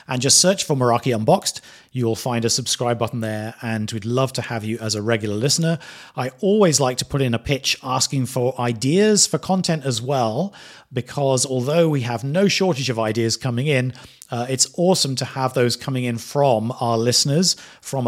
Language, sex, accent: English, male, British